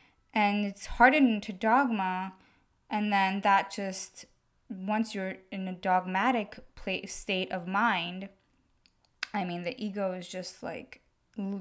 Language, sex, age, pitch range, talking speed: English, female, 20-39, 180-220 Hz, 135 wpm